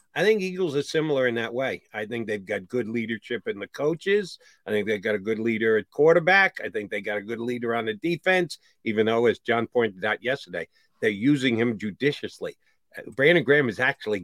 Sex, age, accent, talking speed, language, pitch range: male, 50-69, American, 215 wpm, English, 120-175 Hz